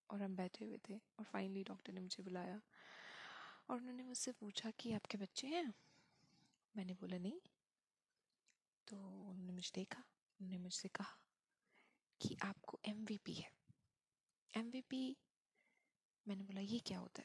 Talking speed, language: 135 wpm, Hindi